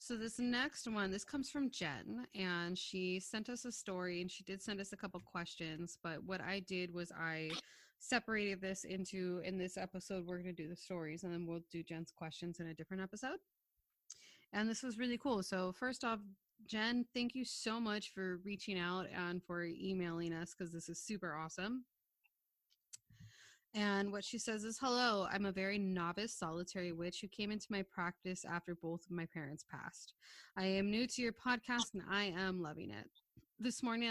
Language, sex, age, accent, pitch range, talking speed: English, female, 20-39, American, 175-215 Hz, 195 wpm